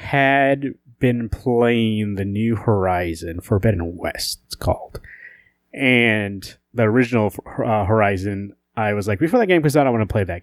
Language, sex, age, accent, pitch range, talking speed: English, male, 30-49, American, 100-120 Hz, 160 wpm